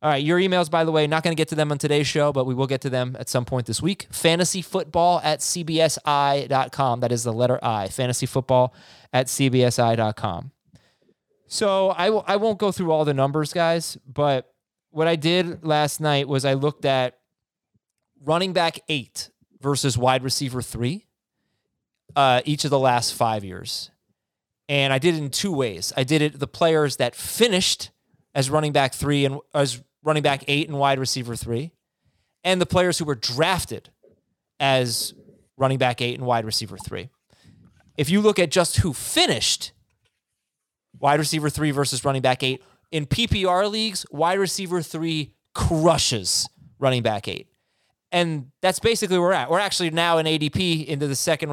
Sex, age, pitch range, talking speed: male, 20-39, 130-165 Hz, 175 wpm